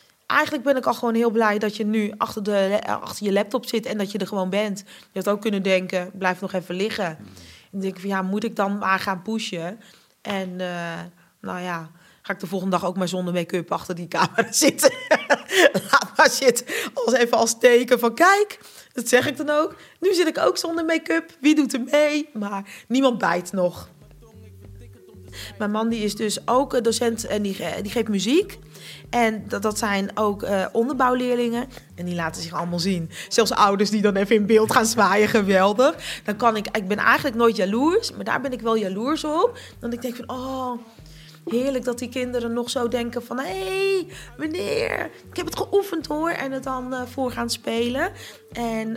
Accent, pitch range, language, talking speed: Dutch, 195-255 Hz, Dutch, 205 wpm